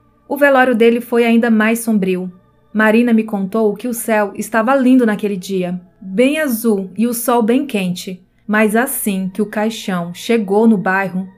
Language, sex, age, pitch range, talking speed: Portuguese, female, 20-39, 195-235 Hz, 170 wpm